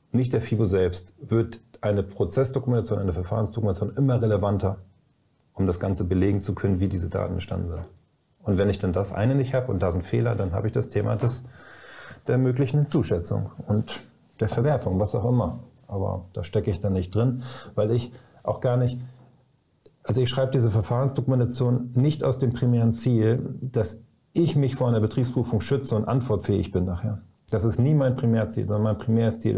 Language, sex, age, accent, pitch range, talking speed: German, male, 40-59, German, 105-125 Hz, 180 wpm